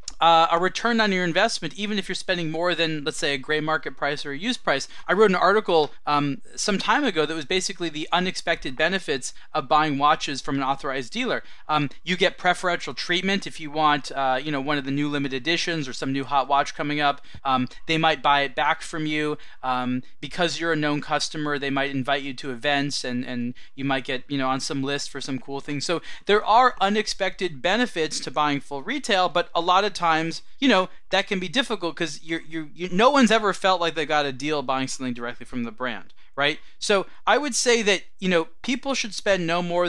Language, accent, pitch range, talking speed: English, American, 145-195 Hz, 230 wpm